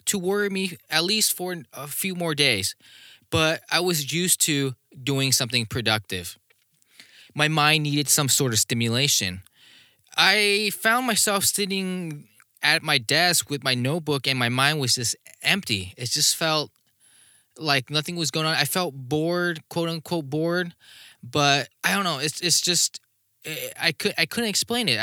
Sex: male